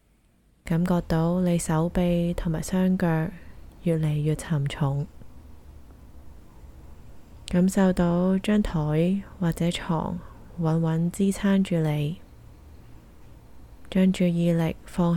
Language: Chinese